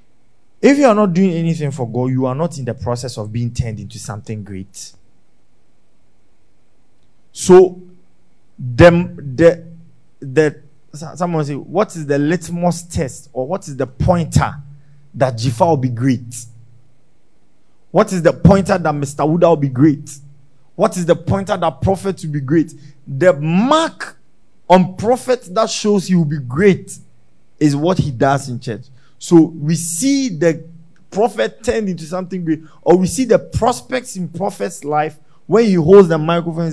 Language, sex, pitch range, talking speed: English, male, 135-185 Hz, 155 wpm